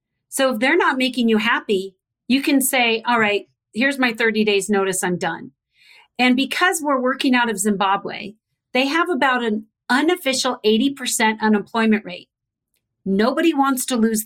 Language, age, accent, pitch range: English, 40-59, American, 215-270 Hz